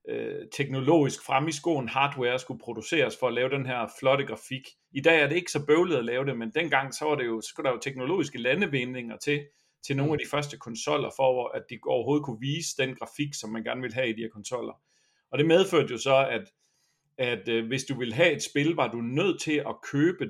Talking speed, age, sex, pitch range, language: 235 wpm, 40-59, male, 115-150 Hz, Danish